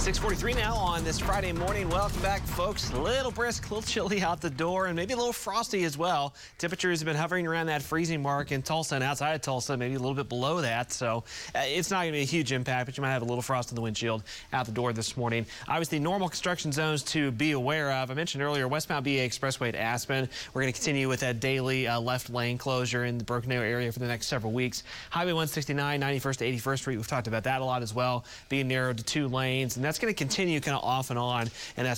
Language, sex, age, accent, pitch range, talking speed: English, male, 30-49, American, 120-150 Hz, 255 wpm